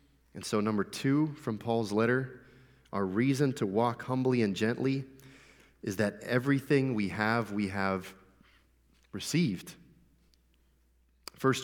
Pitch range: 95-130 Hz